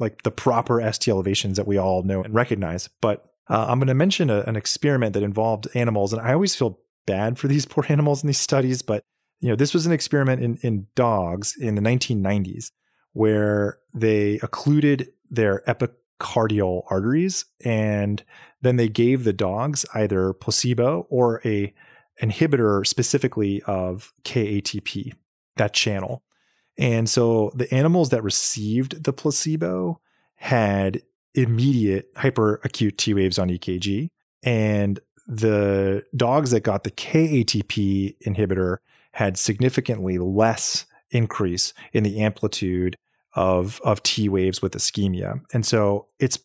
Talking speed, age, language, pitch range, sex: 140 wpm, 30-49, English, 100-125 Hz, male